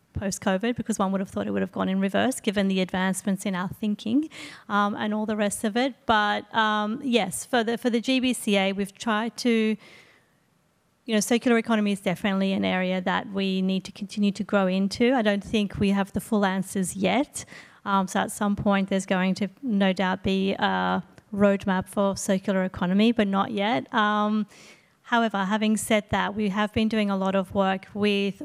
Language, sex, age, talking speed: English, female, 30-49, 195 wpm